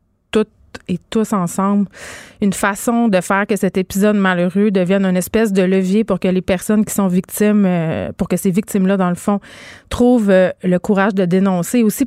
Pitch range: 185-215 Hz